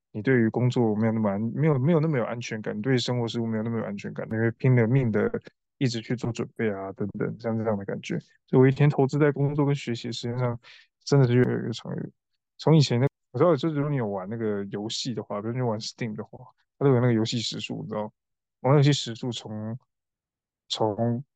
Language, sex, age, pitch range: Chinese, male, 20-39, 110-135 Hz